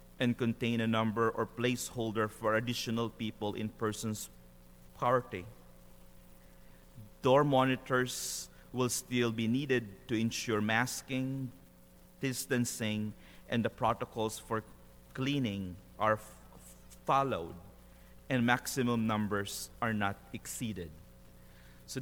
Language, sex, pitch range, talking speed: English, male, 90-120 Hz, 100 wpm